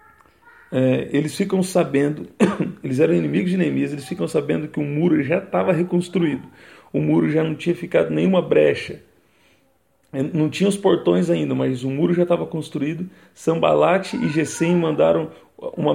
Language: Portuguese